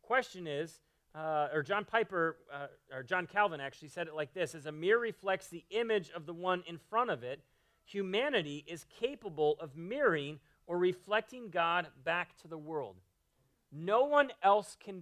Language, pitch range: English, 155-205 Hz